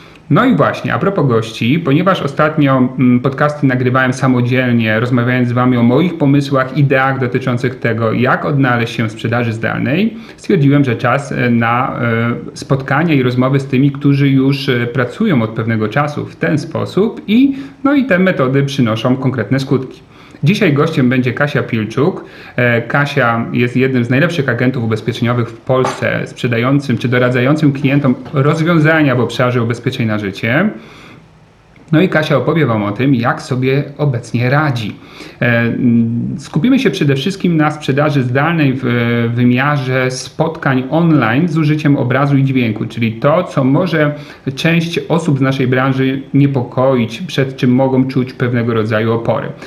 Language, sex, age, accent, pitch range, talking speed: Polish, male, 40-59, native, 125-150 Hz, 145 wpm